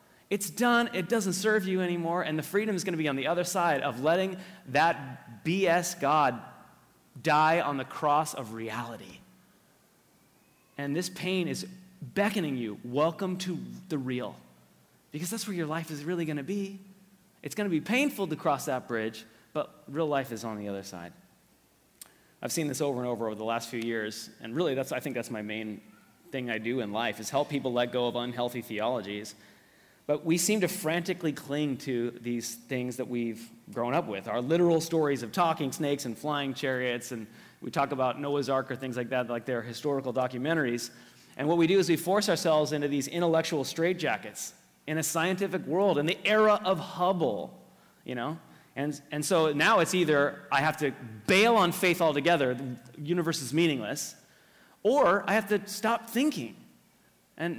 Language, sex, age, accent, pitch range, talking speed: English, male, 30-49, American, 125-175 Hz, 190 wpm